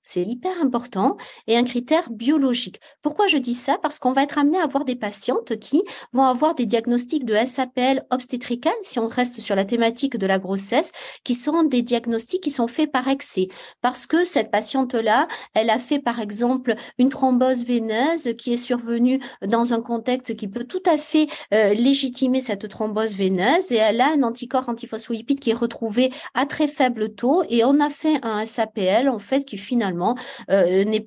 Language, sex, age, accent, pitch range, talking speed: French, female, 50-69, French, 220-270 Hz, 190 wpm